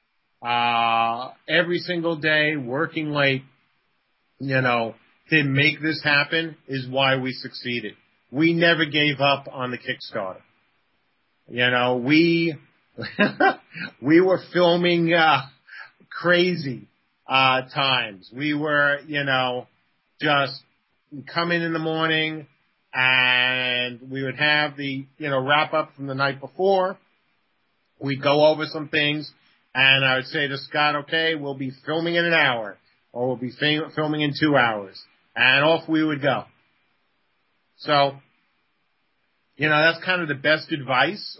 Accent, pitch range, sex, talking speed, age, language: American, 135-160 Hz, male, 135 wpm, 40-59, English